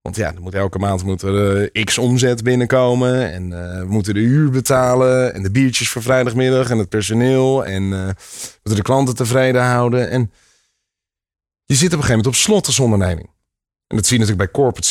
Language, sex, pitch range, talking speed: Dutch, male, 100-130 Hz, 200 wpm